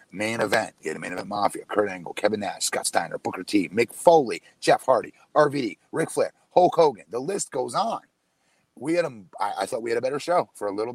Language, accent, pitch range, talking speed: English, American, 110-155 Hz, 225 wpm